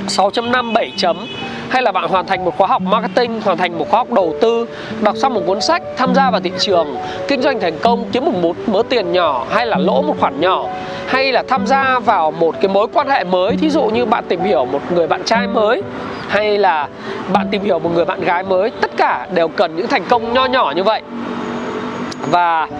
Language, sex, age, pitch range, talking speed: Vietnamese, male, 20-39, 195-250 Hz, 230 wpm